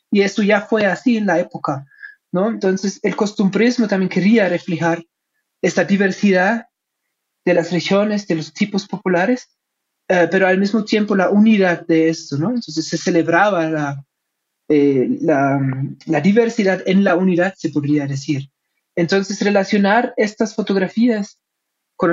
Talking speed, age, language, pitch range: 145 wpm, 30-49, Spanish, 170-210 Hz